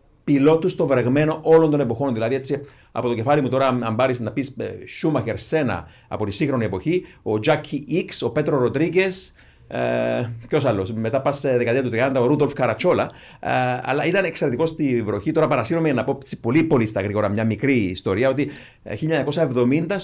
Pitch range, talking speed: 115-150 Hz, 175 wpm